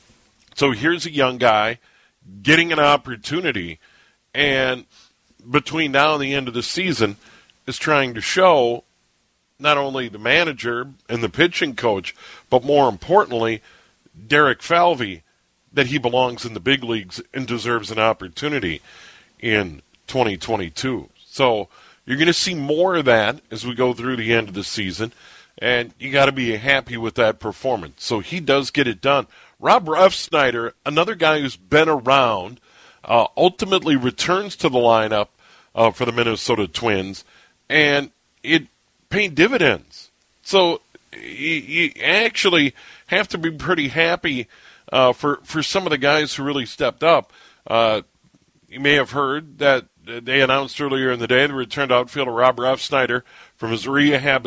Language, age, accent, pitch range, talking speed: English, 40-59, American, 115-145 Hz, 155 wpm